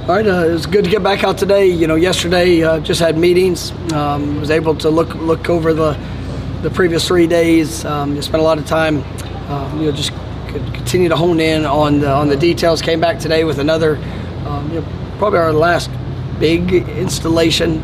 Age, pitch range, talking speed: 30-49, 145-160 Hz, 215 wpm